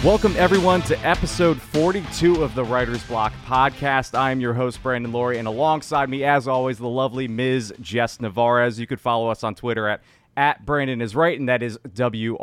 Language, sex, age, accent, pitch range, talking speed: English, male, 30-49, American, 115-145 Hz, 200 wpm